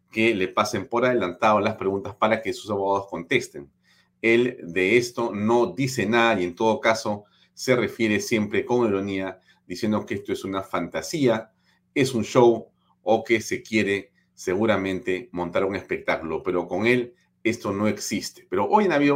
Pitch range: 90-115 Hz